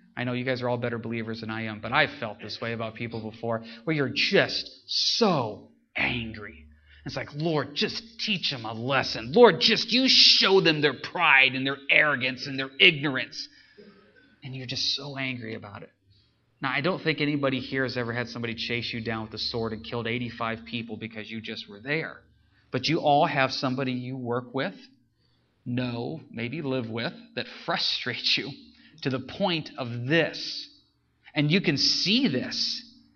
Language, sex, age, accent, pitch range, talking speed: English, male, 30-49, American, 120-195 Hz, 185 wpm